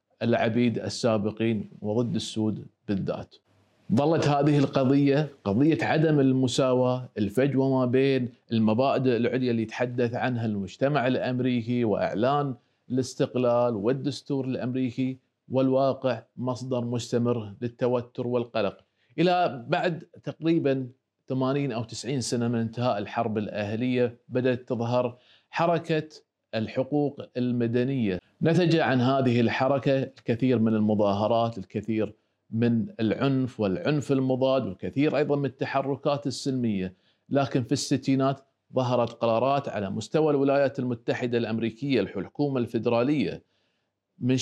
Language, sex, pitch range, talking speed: Arabic, male, 115-135 Hz, 105 wpm